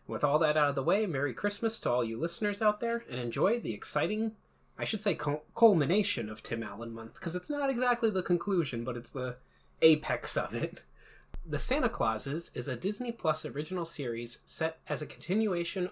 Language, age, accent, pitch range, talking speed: English, 30-49, American, 125-185 Hz, 195 wpm